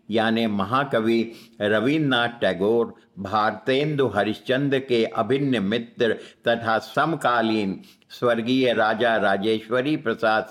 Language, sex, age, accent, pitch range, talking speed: Hindi, male, 60-79, native, 105-125 Hz, 85 wpm